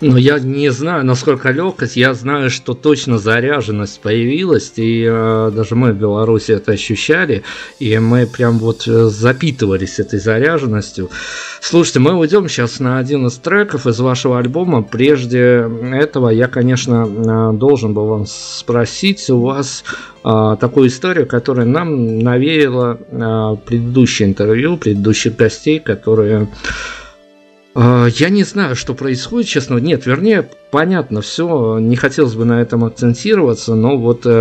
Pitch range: 110-135 Hz